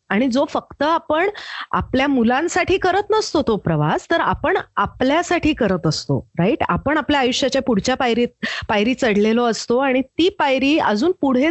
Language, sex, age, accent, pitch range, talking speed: Marathi, female, 30-49, native, 220-320 Hz, 150 wpm